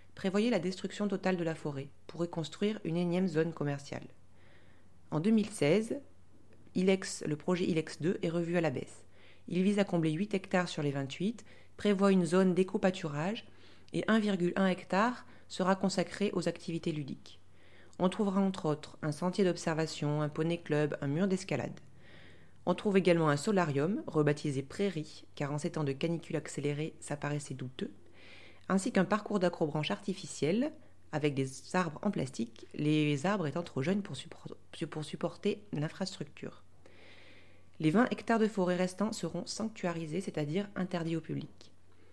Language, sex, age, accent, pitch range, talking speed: French, female, 30-49, French, 140-185 Hz, 155 wpm